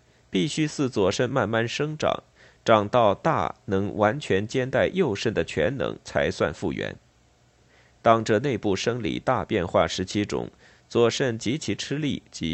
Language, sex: Chinese, male